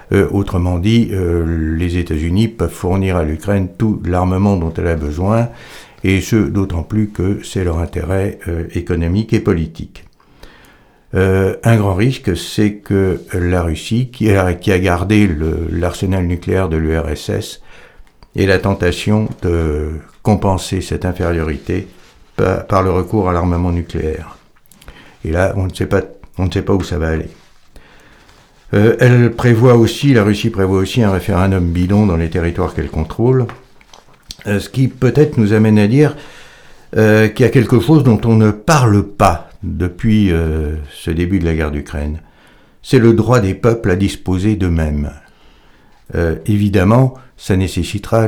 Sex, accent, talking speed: male, French, 155 wpm